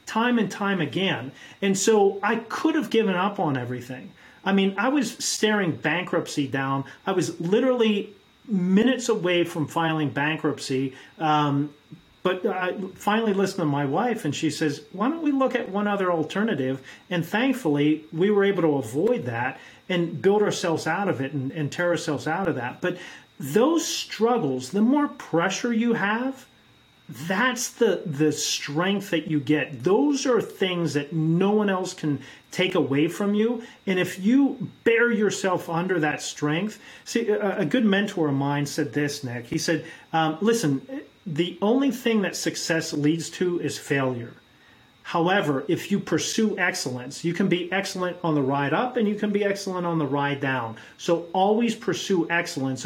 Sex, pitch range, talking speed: male, 150-210 Hz, 175 wpm